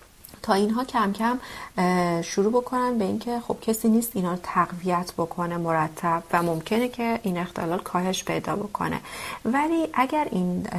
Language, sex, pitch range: Persian, female, 165-210 Hz